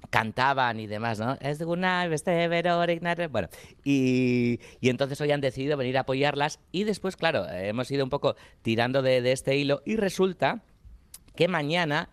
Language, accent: Spanish, Spanish